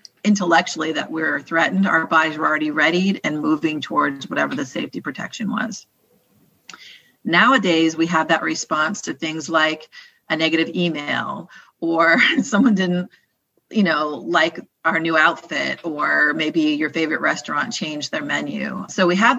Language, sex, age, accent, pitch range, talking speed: English, female, 40-59, American, 160-195 Hz, 150 wpm